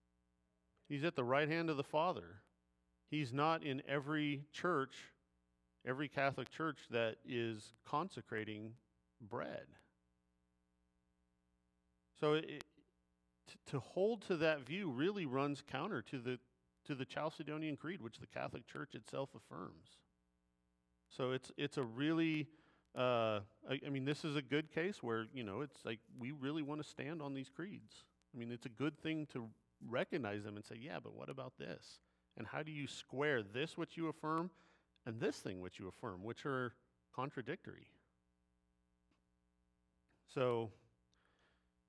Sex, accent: male, American